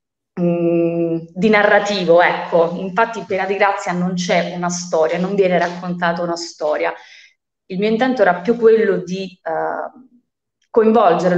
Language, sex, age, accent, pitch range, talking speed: Italian, female, 20-39, native, 175-215 Hz, 135 wpm